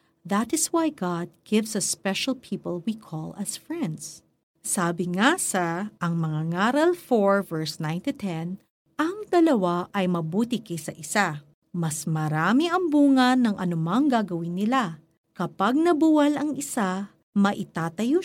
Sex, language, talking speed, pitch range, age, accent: female, Filipino, 135 wpm, 170-250 Hz, 50-69, native